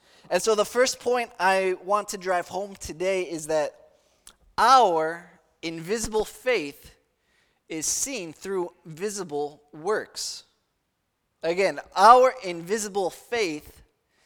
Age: 20-39